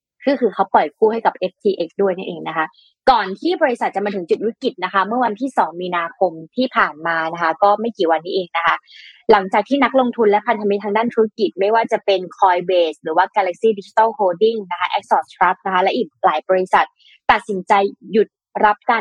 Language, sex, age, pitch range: Thai, female, 20-39, 180-230 Hz